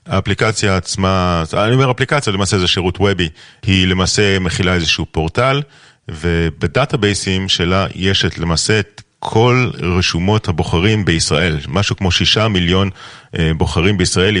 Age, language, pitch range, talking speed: 40-59, Hebrew, 85-105 Hz, 125 wpm